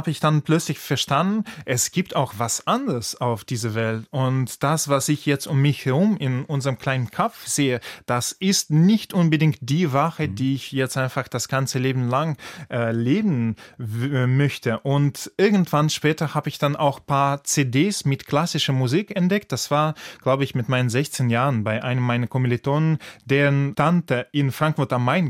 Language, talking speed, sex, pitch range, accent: German, 180 wpm, male, 130-155 Hz, German